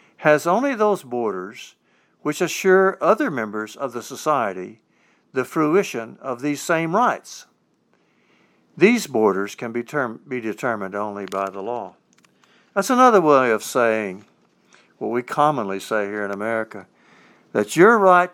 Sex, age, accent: male, 60-79, American